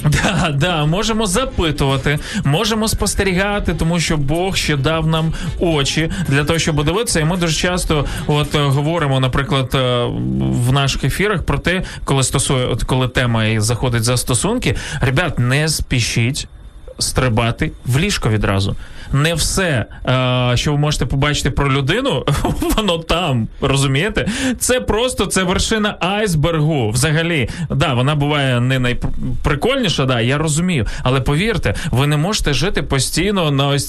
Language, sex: Ukrainian, male